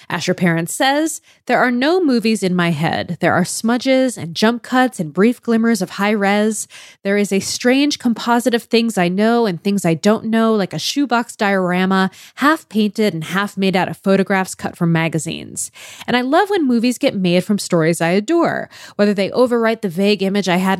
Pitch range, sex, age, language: 180-235 Hz, female, 20-39, English